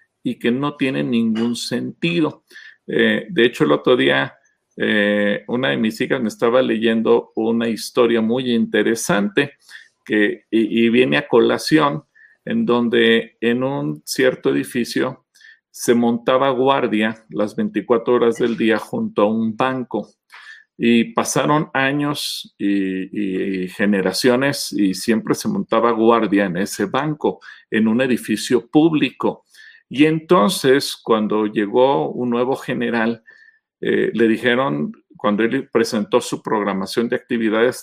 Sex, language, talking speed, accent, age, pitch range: male, Spanish, 130 wpm, Mexican, 40-59, 115-150 Hz